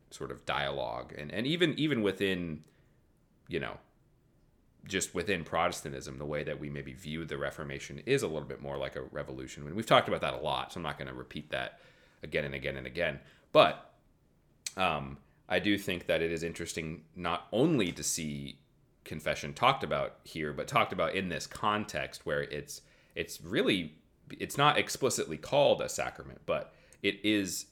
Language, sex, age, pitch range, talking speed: English, male, 30-49, 70-95 Hz, 180 wpm